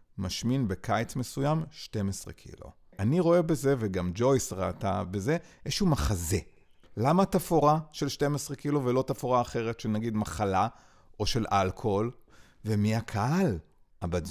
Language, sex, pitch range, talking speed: Hebrew, male, 95-125 Hz, 125 wpm